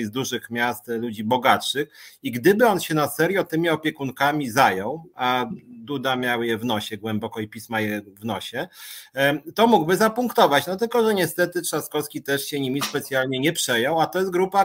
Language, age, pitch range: Polish, 30-49, 125-160 Hz